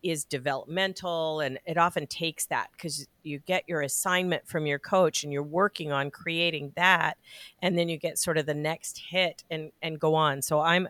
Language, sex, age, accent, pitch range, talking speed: English, female, 50-69, American, 145-180 Hz, 200 wpm